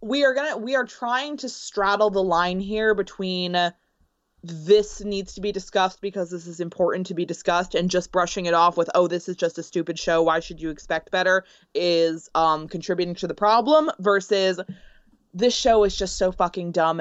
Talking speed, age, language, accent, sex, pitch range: 200 wpm, 20-39, English, American, female, 170-220 Hz